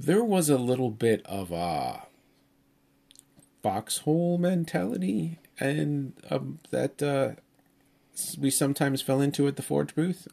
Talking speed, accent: 120 wpm, American